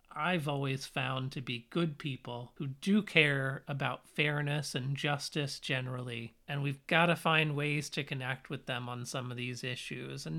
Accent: American